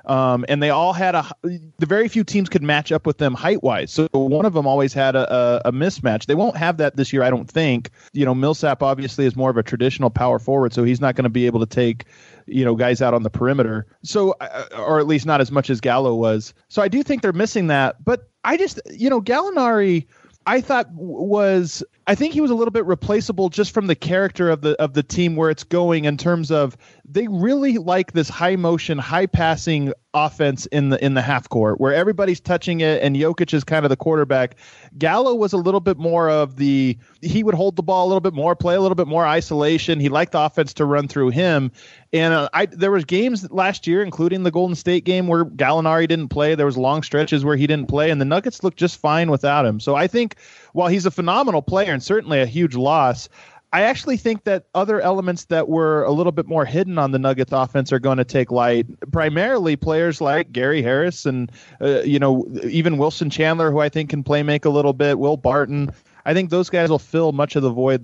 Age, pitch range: 20-39, 135-180 Hz